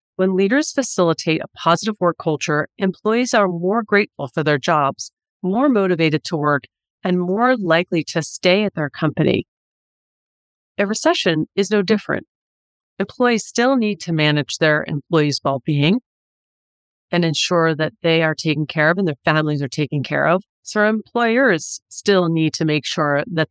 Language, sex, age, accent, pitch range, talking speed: English, female, 30-49, American, 150-185 Hz, 160 wpm